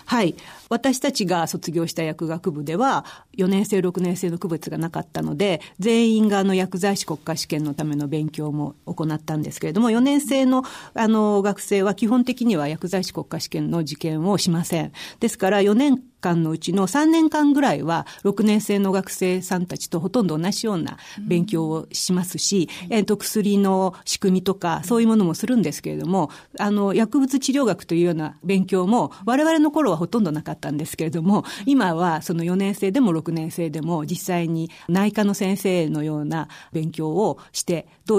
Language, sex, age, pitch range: Japanese, female, 40-59, 165-210 Hz